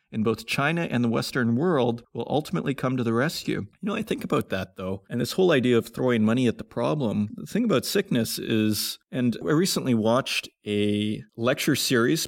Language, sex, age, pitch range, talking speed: English, male, 30-49, 105-130 Hz, 205 wpm